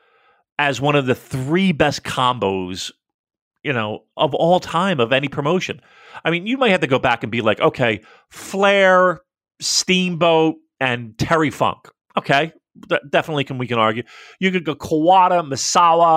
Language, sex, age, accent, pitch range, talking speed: English, male, 40-59, American, 125-175 Hz, 165 wpm